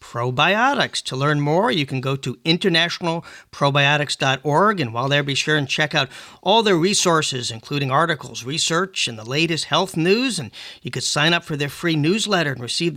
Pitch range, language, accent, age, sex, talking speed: 145-185 Hz, English, American, 50-69, male, 180 wpm